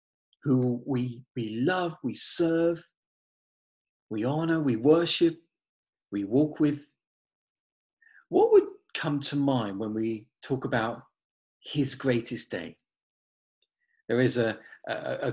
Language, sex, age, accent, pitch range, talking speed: English, male, 40-59, British, 120-165 Hz, 115 wpm